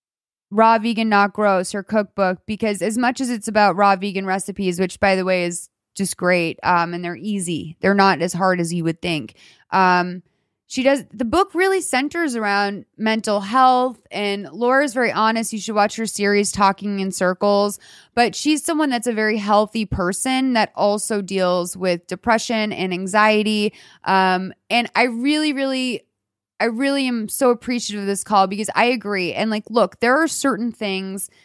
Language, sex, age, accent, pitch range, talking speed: English, female, 20-39, American, 190-235 Hz, 180 wpm